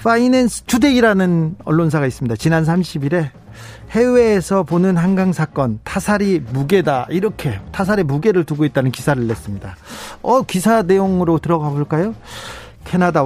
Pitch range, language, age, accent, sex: 145-210 Hz, Korean, 40-59, native, male